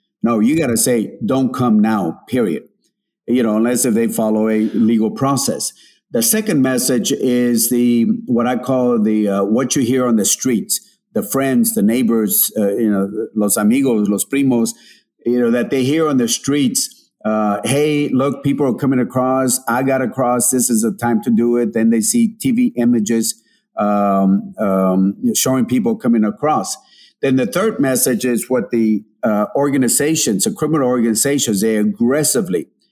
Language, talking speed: English, 175 wpm